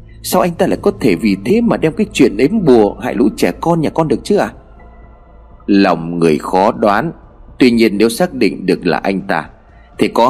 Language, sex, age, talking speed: Vietnamese, male, 30-49, 220 wpm